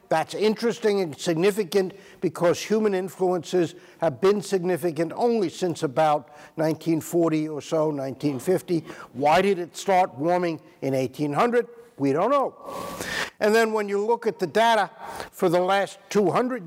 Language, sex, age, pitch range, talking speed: English, male, 60-79, 160-195 Hz, 140 wpm